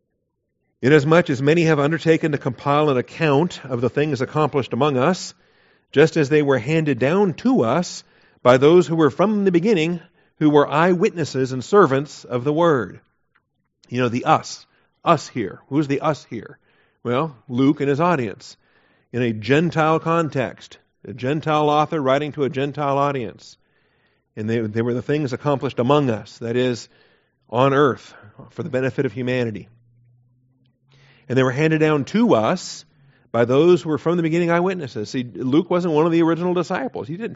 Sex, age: male, 50-69